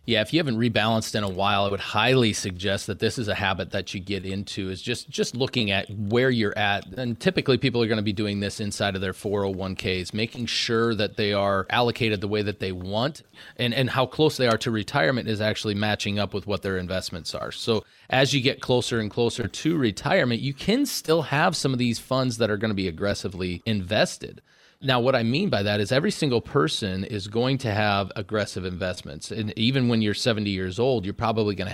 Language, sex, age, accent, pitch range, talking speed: English, male, 30-49, American, 100-125 Hz, 225 wpm